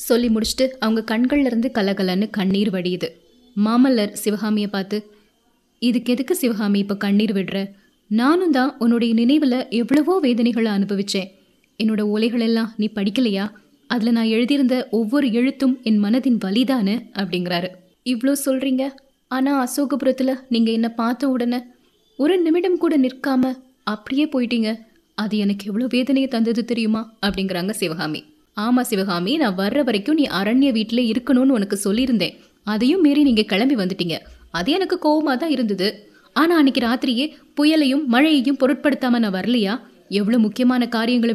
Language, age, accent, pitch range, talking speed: Tamil, 20-39, native, 210-265 Hz, 130 wpm